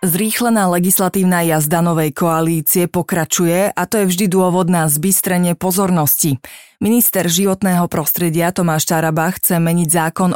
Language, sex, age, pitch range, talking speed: Slovak, female, 30-49, 165-195 Hz, 125 wpm